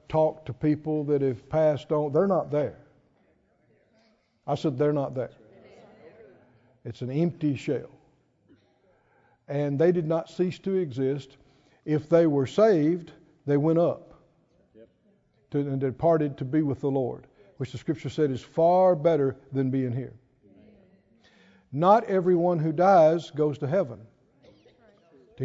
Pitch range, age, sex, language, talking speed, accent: 140-180 Hz, 60-79, male, English, 135 wpm, American